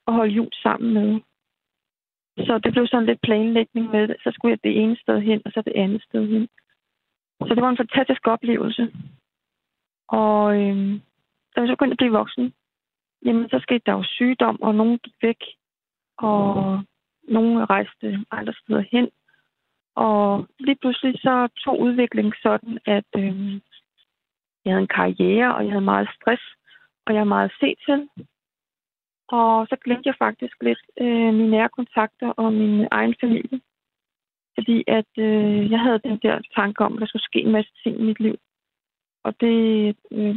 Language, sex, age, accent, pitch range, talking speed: Danish, female, 30-49, native, 210-240 Hz, 170 wpm